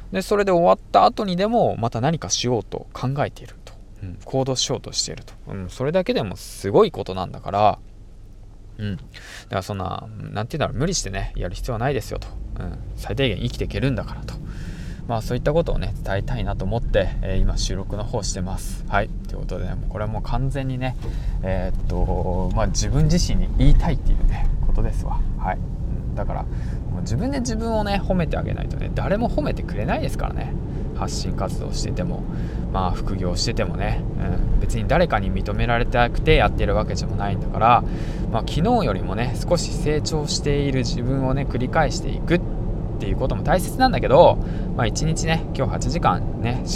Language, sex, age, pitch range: Japanese, male, 20-39, 95-130 Hz